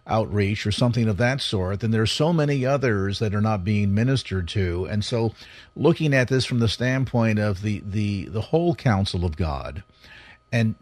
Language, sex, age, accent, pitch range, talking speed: English, male, 50-69, American, 115-150 Hz, 190 wpm